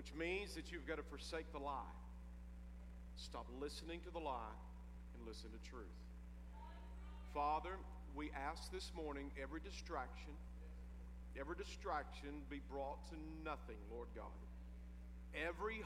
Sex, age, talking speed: male, 50-69, 130 wpm